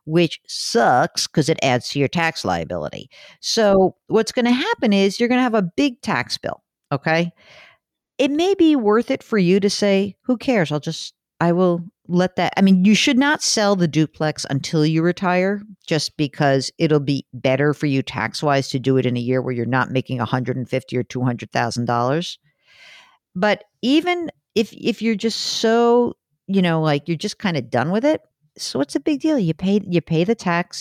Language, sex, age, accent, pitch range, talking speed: English, female, 50-69, American, 135-200 Hz, 205 wpm